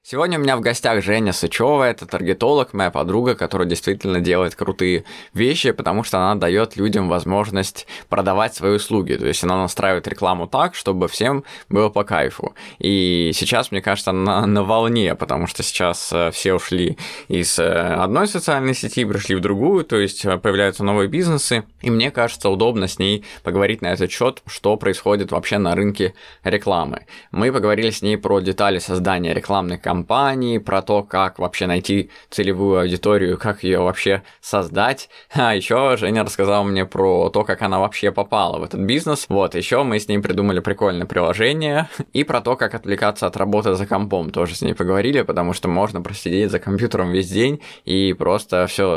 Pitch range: 90-105 Hz